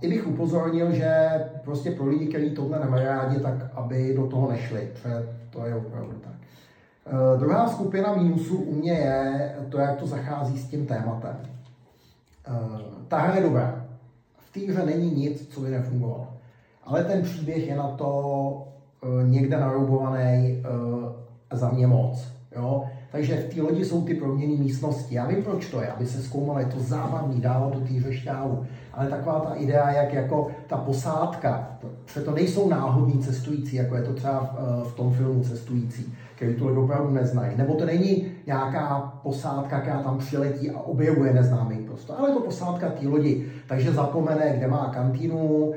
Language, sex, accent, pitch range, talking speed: Czech, male, native, 125-155 Hz, 170 wpm